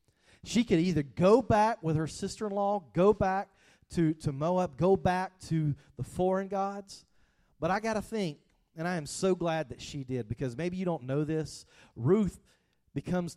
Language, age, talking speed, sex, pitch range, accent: English, 40-59, 180 wpm, male, 150-195 Hz, American